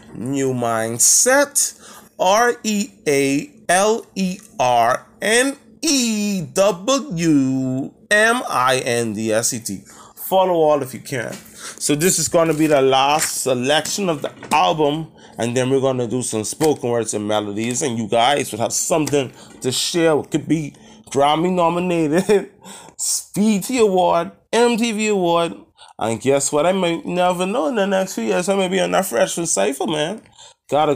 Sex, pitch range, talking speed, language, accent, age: male, 130-200 Hz, 135 wpm, English, American, 30-49